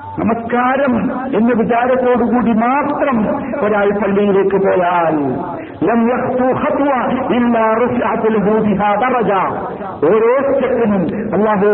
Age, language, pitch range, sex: 50-69, Malayalam, 200-275 Hz, male